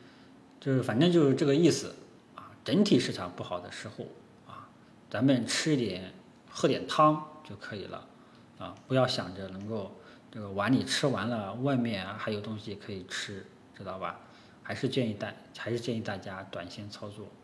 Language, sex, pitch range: Chinese, male, 100-130 Hz